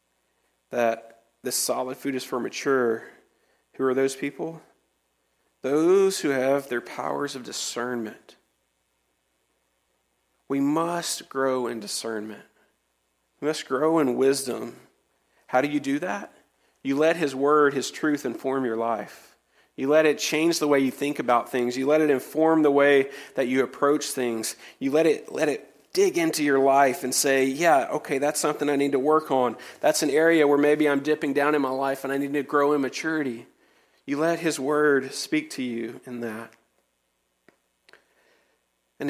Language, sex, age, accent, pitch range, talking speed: English, male, 40-59, American, 125-150 Hz, 170 wpm